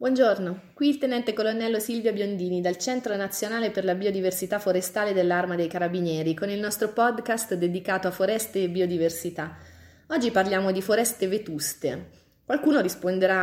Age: 30-49